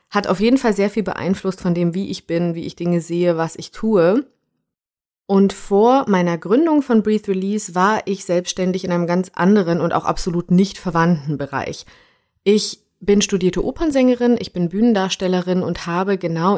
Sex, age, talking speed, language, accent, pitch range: female, 30-49, 175 wpm, German, German, 175-210 Hz